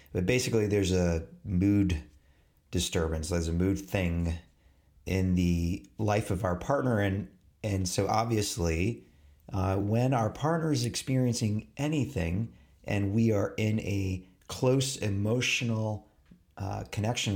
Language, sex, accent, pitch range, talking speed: English, male, American, 90-110 Hz, 125 wpm